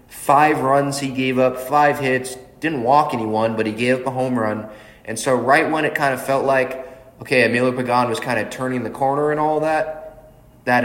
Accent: American